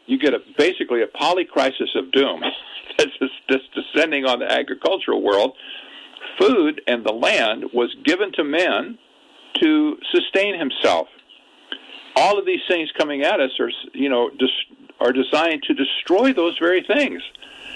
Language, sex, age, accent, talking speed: English, male, 50-69, American, 150 wpm